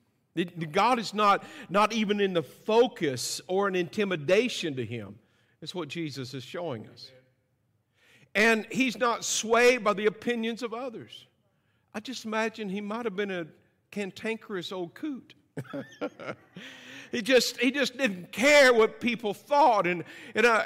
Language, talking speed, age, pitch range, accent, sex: English, 150 wpm, 50-69, 155-225 Hz, American, male